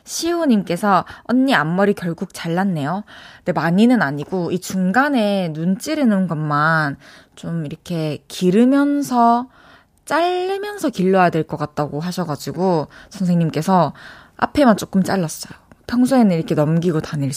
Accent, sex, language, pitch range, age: native, female, Korean, 170-245 Hz, 20-39